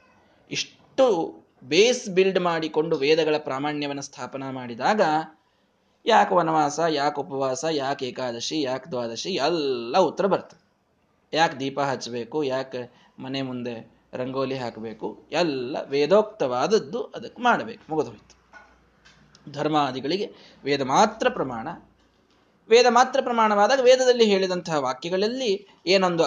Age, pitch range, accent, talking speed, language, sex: 20-39, 130-175 Hz, native, 100 wpm, Kannada, male